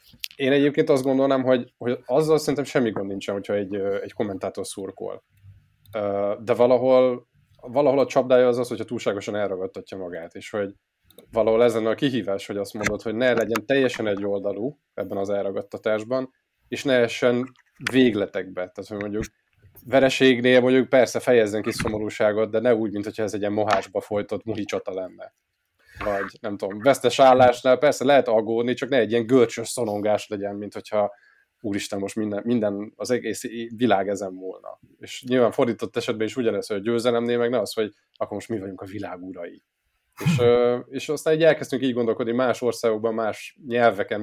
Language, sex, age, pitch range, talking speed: Hungarian, male, 20-39, 105-125 Hz, 170 wpm